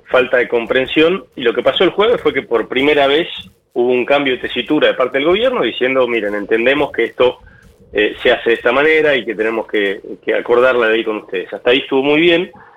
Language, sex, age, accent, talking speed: Spanish, male, 30-49, Argentinian, 230 wpm